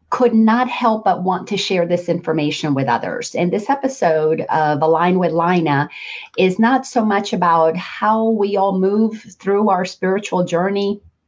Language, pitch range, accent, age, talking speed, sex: English, 160-210 Hz, American, 40-59, 165 wpm, female